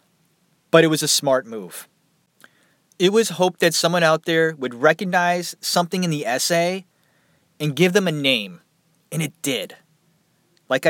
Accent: American